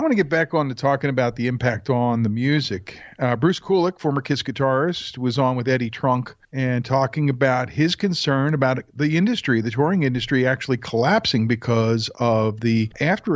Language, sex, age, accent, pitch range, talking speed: English, male, 50-69, American, 125-160 Hz, 190 wpm